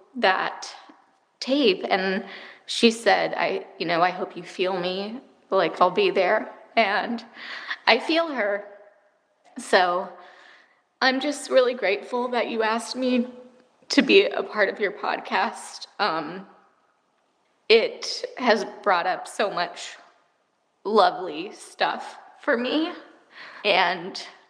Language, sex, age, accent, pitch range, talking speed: English, female, 20-39, American, 190-255 Hz, 120 wpm